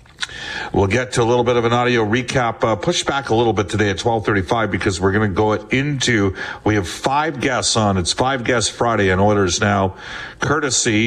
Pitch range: 100-120 Hz